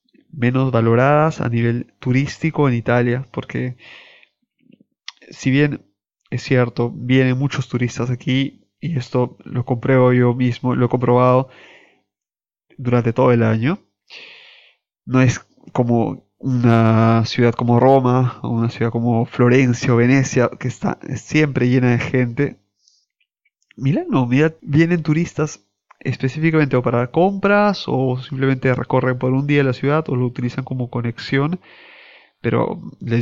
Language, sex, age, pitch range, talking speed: Spanish, male, 20-39, 120-140 Hz, 130 wpm